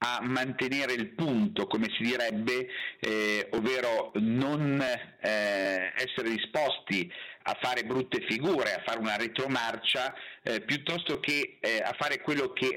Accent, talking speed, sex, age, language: native, 135 wpm, male, 50-69, Italian